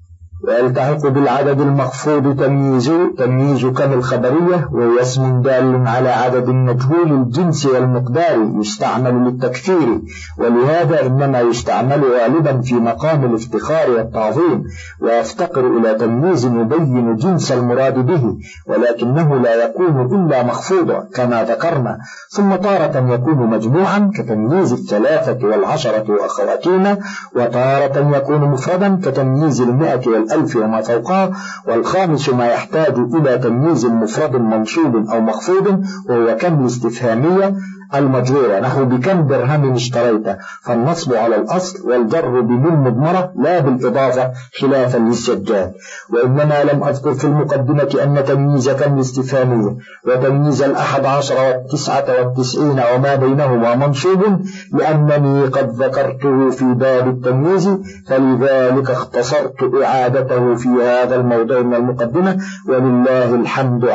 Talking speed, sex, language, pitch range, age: 105 wpm, male, Arabic, 120-150 Hz, 50-69